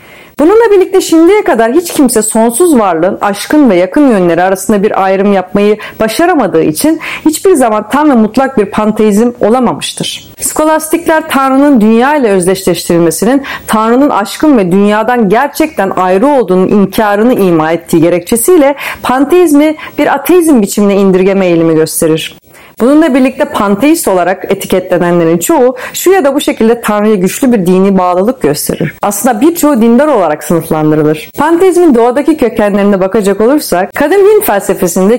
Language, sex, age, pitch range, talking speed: Turkish, female, 40-59, 185-270 Hz, 135 wpm